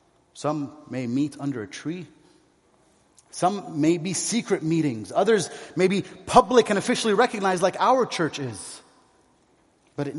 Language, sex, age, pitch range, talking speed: English, male, 30-49, 135-205 Hz, 140 wpm